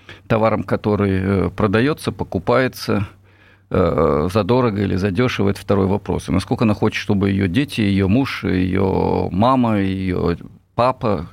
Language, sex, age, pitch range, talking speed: Russian, male, 50-69, 100-130 Hz, 115 wpm